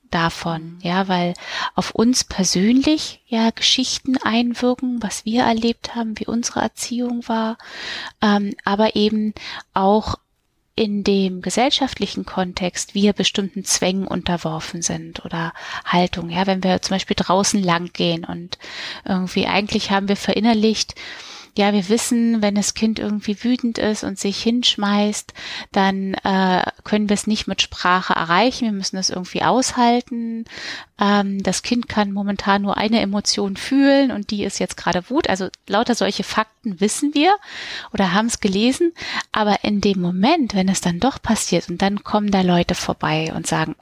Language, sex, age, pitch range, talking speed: German, female, 20-39, 185-225 Hz, 155 wpm